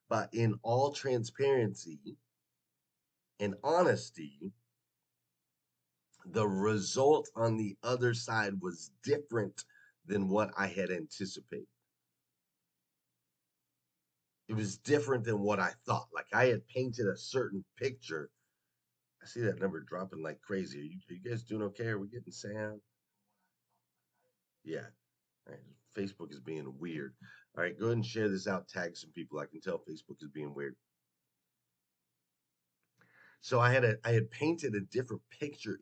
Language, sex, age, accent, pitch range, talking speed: English, male, 40-59, American, 70-115 Hz, 140 wpm